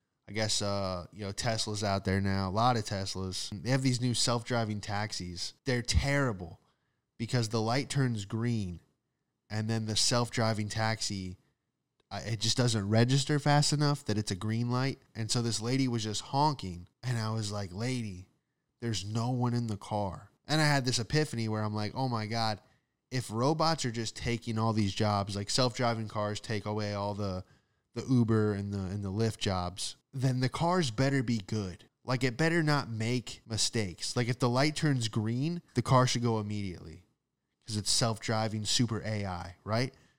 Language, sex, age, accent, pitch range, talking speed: English, male, 10-29, American, 105-130 Hz, 185 wpm